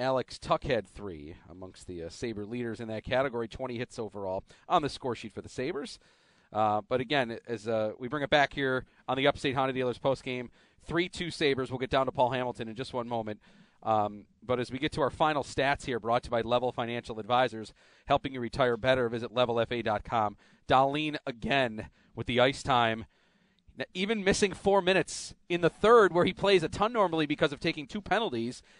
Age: 40-59